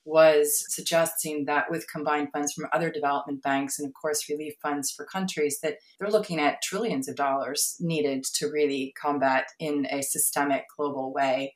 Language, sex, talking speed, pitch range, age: English, female, 170 wpm, 140-160 Hz, 30-49